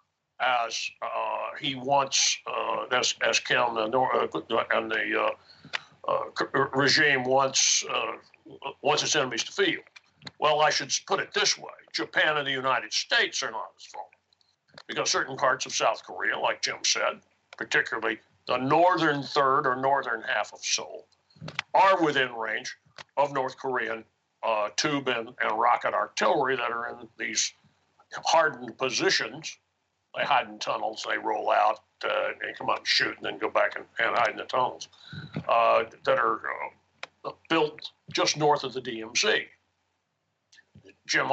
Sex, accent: male, American